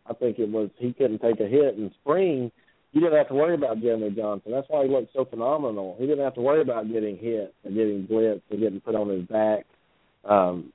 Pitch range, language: 110-140 Hz, English